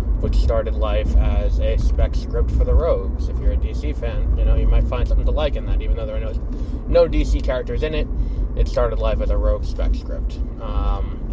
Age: 20-39